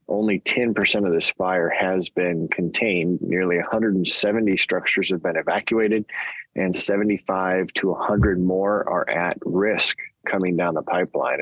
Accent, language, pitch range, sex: American, English, 90-100 Hz, male